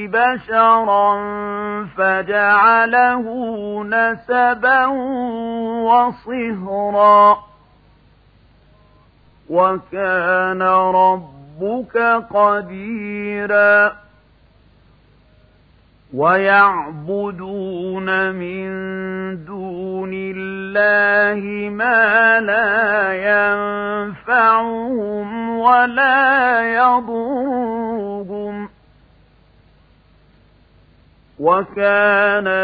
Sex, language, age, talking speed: male, Arabic, 50-69, 30 wpm